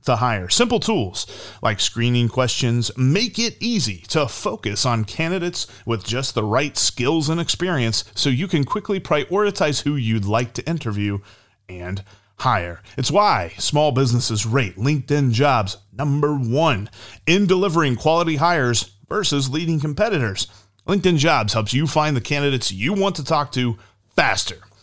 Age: 30-49